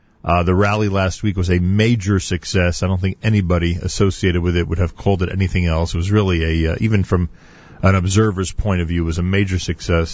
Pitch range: 90-120 Hz